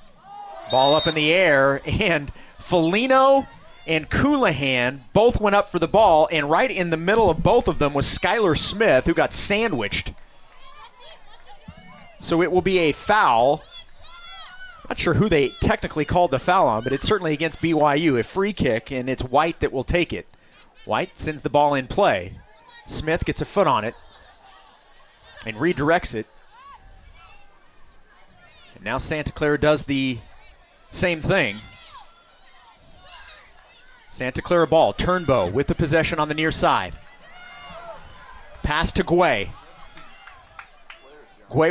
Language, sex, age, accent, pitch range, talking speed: English, male, 30-49, American, 145-180 Hz, 140 wpm